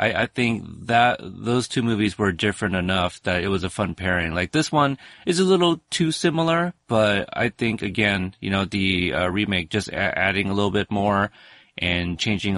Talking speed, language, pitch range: 195 wpm, English, 90-110 Hz